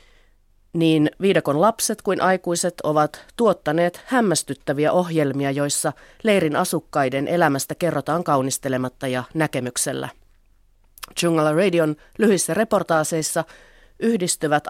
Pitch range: 140-180 Hz